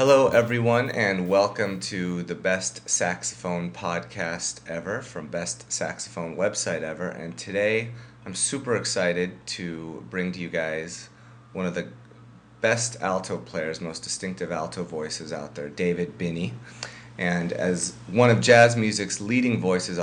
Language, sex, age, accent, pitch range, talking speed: English, male, 30-49, American, 80-100 Hz, 140 wpm